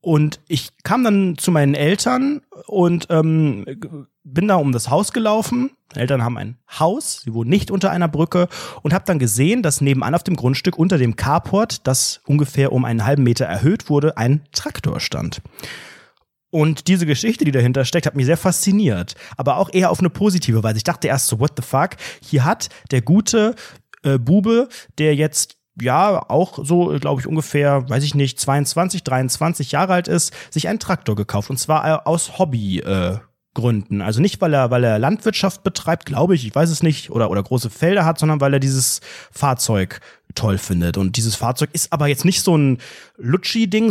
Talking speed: 195 wpm